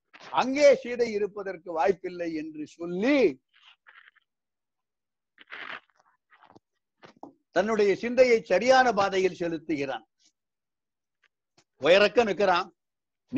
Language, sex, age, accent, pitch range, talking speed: Tamil, male, 60-79, native, 195-255 Hz, 60 wpm